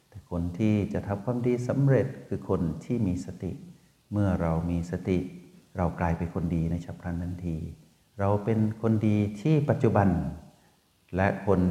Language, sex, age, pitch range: Thai, male, 60-79, 90-115 Hz